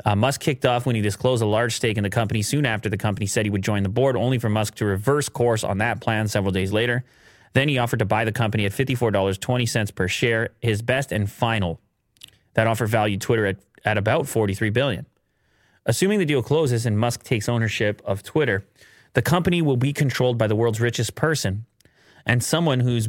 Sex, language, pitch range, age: male, English, 105-130 Hz, 30-49